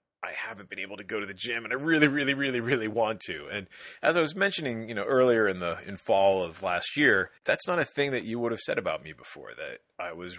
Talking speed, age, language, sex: 270 wpm, 30-49, English, male